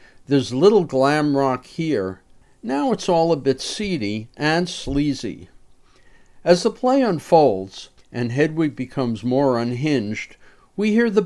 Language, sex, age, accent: English, male, 50-69, American